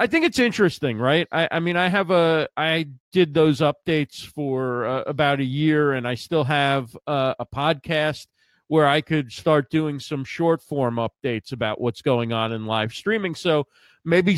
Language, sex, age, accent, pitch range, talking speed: English, male, 40-59, American, 130-160 Hz, 190 wpm